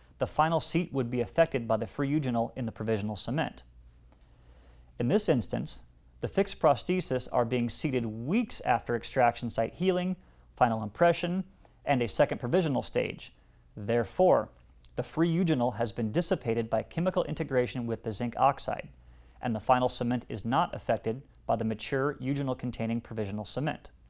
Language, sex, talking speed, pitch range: English, male, 155 wpm, 110-150 Hz